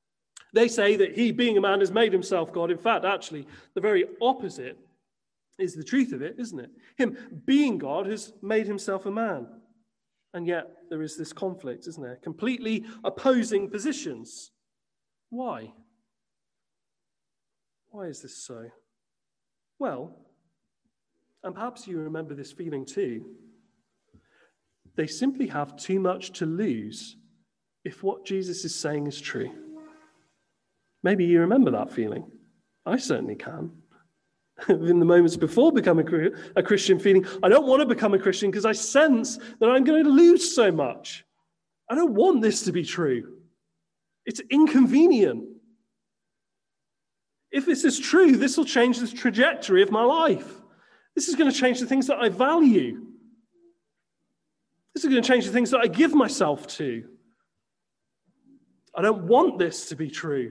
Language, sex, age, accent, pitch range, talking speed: English, male, 40-59, British, 185-270 Hz, 155 wpm